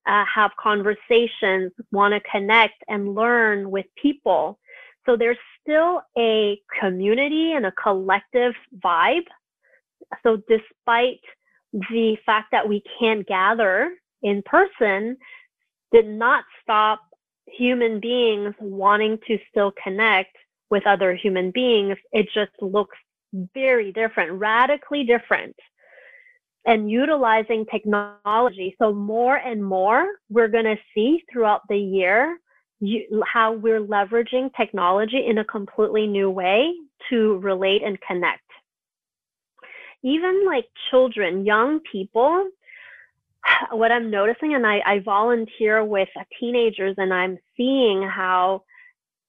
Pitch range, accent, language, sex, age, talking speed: 205-250 Hz, American, English, female, 30-49, 115 wpm